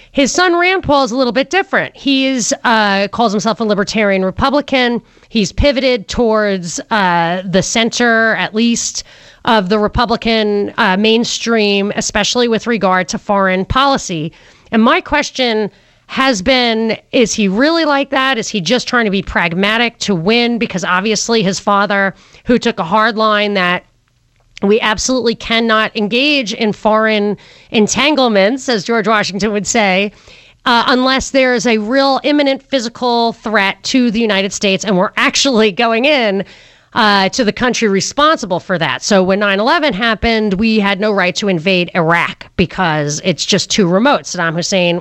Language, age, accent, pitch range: English, 30-49, American, 195-245 Hz